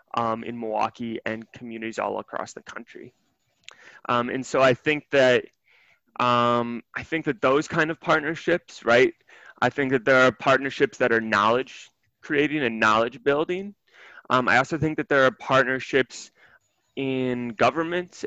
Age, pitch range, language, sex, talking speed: 20-39, 120-150 Hz, English, male, 155 wpm